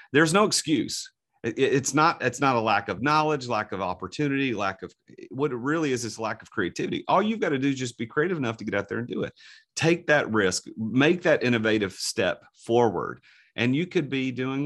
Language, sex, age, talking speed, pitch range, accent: English, male, 40-59, 215 wpm, 95-135 Hz, American